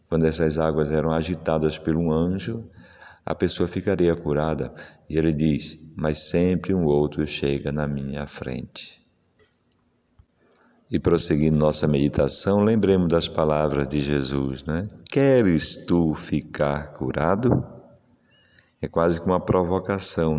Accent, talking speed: Brazilian, 125 wpm